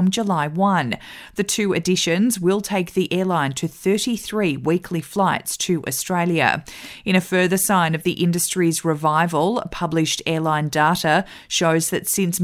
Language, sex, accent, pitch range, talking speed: English, female, Australian, 165-200 Hz, 140 wpm